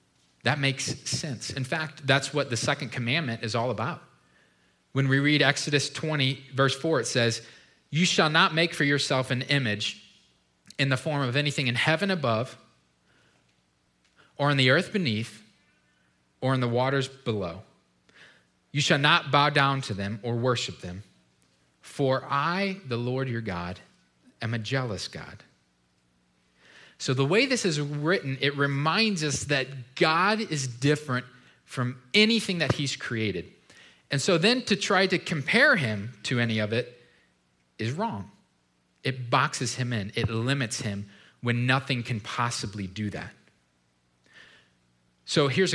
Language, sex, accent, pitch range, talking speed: English, male, American, 105-145 Hz, 150 wpm